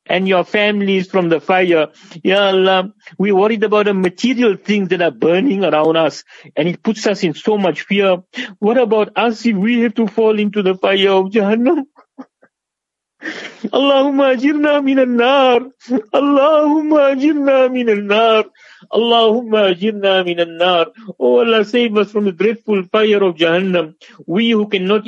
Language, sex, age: English, male, 60-79